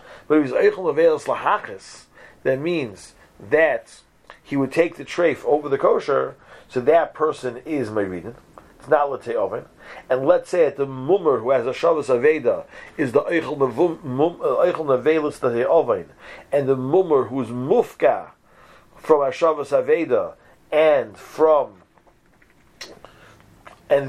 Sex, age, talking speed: male, 40-59, 125 wpm